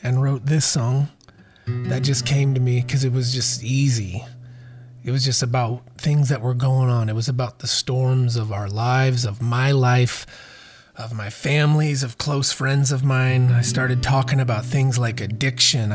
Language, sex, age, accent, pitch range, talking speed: English, male, 30-49, American, 120-140 Hz, 185 wpm